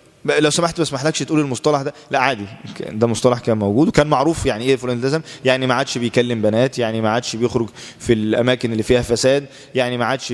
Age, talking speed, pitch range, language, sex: 20-39, 210 wpm, 120-140 Hz, Arabic, male